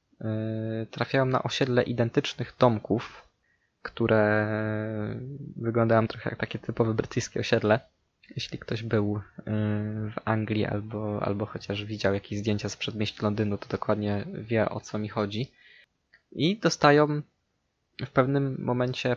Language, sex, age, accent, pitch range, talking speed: Polish, male, 20-39, native, 110-145 Hz, 120 wpm